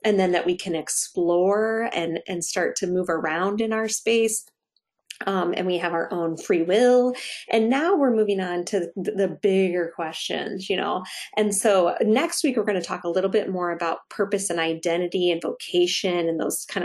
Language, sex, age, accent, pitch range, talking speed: English, female, 30-49, American, 175-215 Hz, 195 wpm